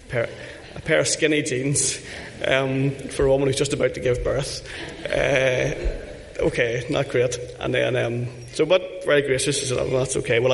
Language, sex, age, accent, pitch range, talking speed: English, male, 20-39, Irish, 120-145 Hz, 195 wpm